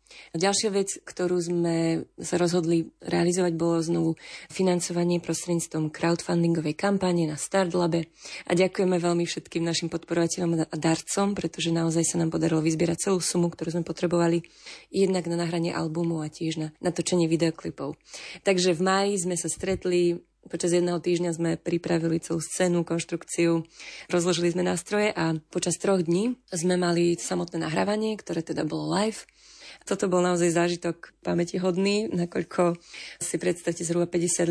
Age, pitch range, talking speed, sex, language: 30-49, 170-180 Hz, 145 wpm, female, Slovak